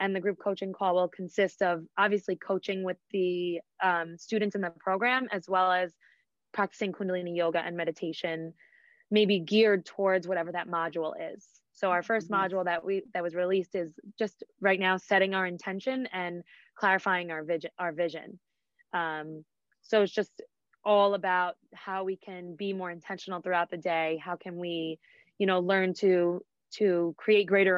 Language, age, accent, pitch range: English, 20-39, American, 175-205 Hz